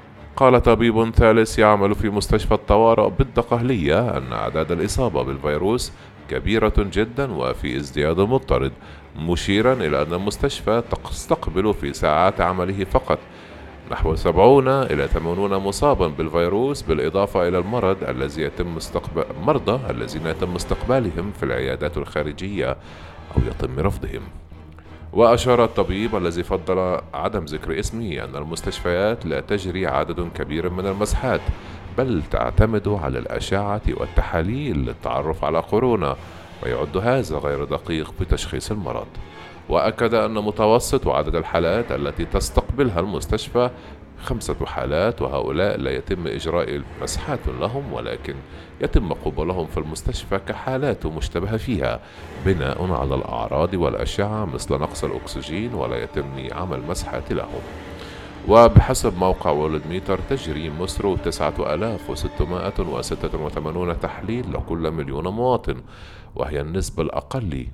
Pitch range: 80-105 Hz